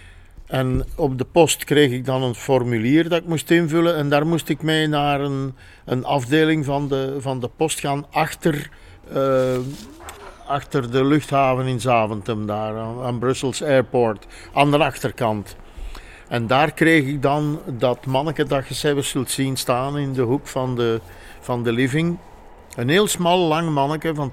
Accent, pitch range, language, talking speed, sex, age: Dutch, 130-160 Hz, Dutch, 165 wpm, male, 50-69